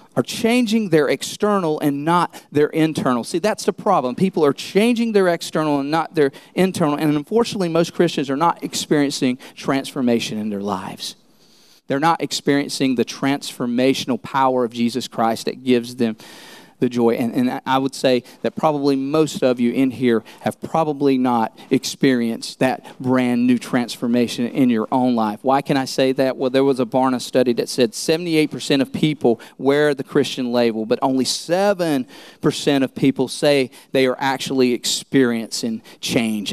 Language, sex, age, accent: English, male, 40-59, American